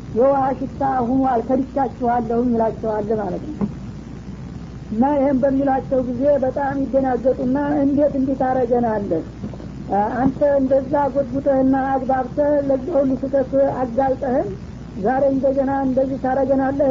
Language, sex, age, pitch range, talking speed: Amharic, female, 60-79, 250-275 Hz, 105 wpm